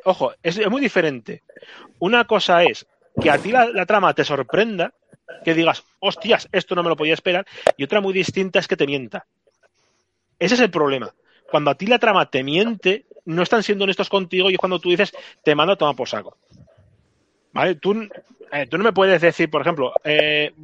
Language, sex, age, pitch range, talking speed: Spanish, male, 30-49, 165-215 Hz, 205 wpm